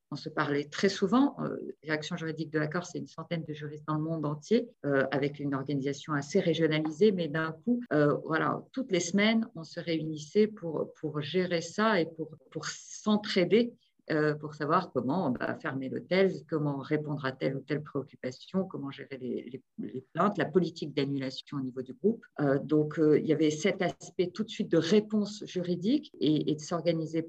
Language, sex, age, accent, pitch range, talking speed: English, female, 50-69, French, 150-205 Hz, 195 wpm